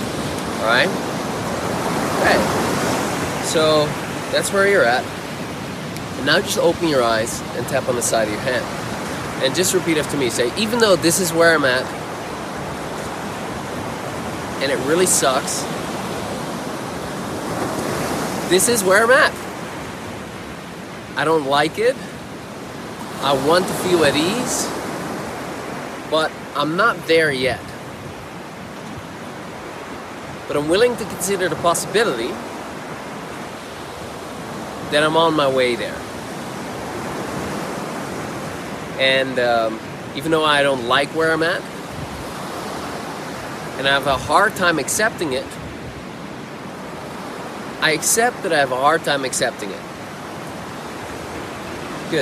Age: 30-49